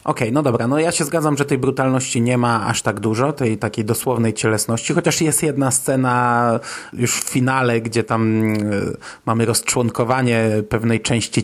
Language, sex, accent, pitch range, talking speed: Polish, male, native, 115-140 Hz, 170 wpm